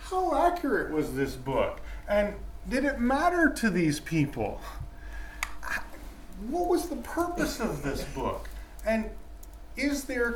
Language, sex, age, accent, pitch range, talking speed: English, male, 30-49, American, 155-225 Hz, 125 wpm